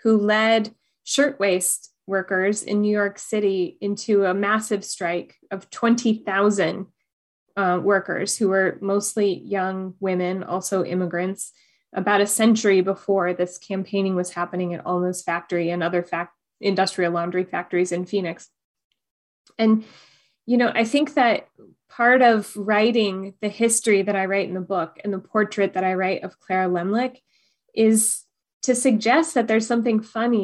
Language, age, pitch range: English, 20-39, 185-220 Hz